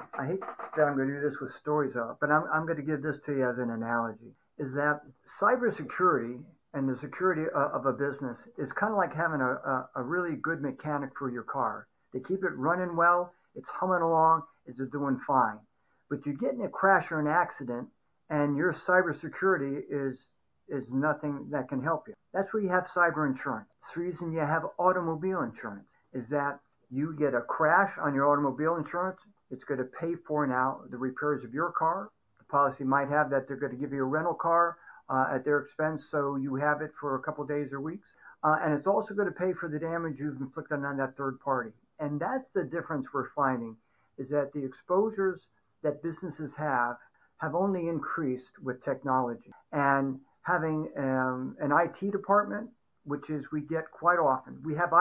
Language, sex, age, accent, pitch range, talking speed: English, male, 60-79, American, 135-170 Hz, 200 wpm